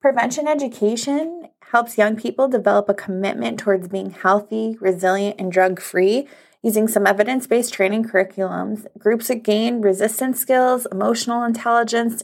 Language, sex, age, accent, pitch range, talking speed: English, female, 20-39, American, 200-235 Hz, 125 wpm